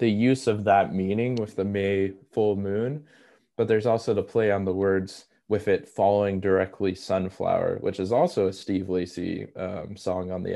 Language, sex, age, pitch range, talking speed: English, male, 20-39, 95-110 Hz, 190 wpm